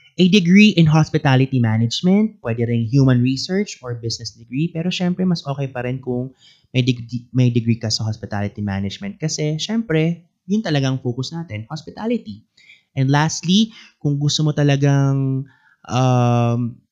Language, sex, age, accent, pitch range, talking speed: English, male, 20-39, Filipino, 110-140 Hz, 145 wpm